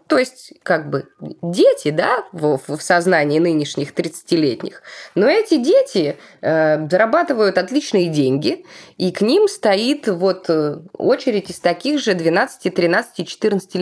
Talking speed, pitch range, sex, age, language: 115 wpm, 160-230 Hz, female, 20-39, Russian